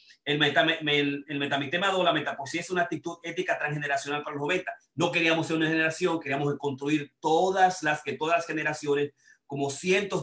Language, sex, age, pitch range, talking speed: Spanish, male, 30-49, 135-165 Hz, 180 wpm